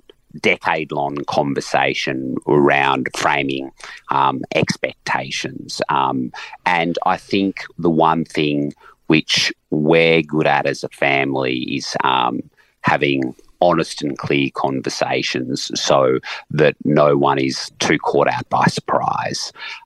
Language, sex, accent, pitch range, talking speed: English, male, Australian, 70-80 Hz, 110 wpm